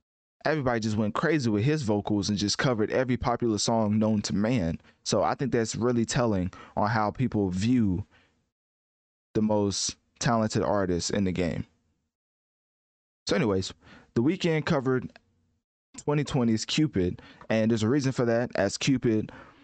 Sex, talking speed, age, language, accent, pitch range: male, 145 wpm, 20-39, English, American, 105-130 Hz